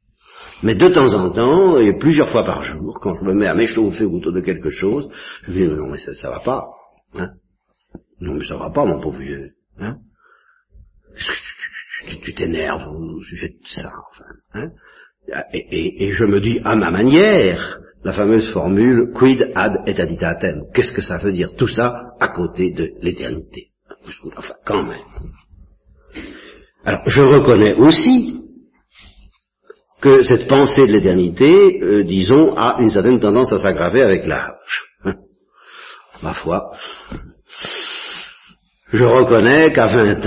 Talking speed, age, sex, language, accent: 160 wpm, 60-79, male, French, French